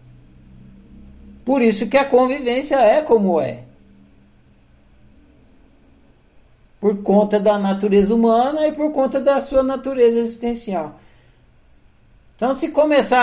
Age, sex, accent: 60-79, male, Brazilian